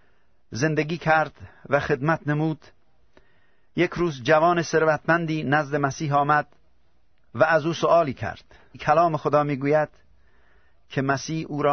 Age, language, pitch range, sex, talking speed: 50-69, Persian, 125-155 Hz, male, 130 wpm